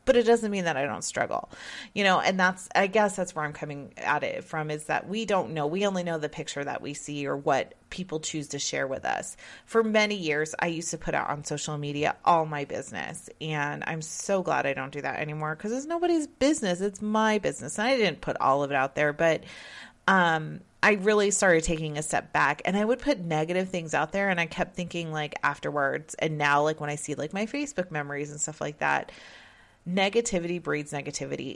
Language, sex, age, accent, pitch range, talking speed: English, female, 30-49, American, 150-200 Hz, 230 wpm